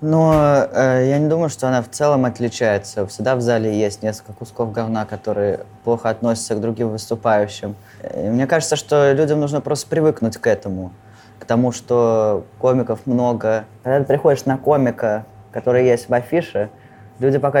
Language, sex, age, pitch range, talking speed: Russian, male, 20-39, 115-135 Hz, 165 wpm